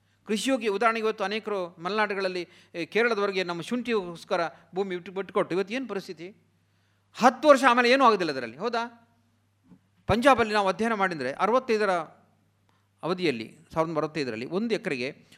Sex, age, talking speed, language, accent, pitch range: male, 40-59, 120 wpm, Kannada, native, 150-225 Hz